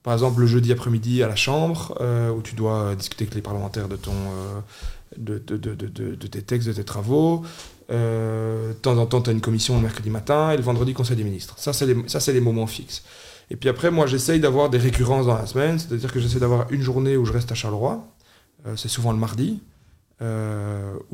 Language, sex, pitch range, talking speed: French, male, 105-125 Hz, 240 wpm